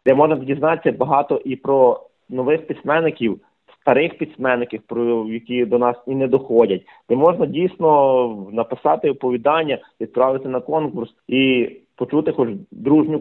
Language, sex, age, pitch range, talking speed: Ukrainian, male, 30-49, 120-155 Hz, 125 wpm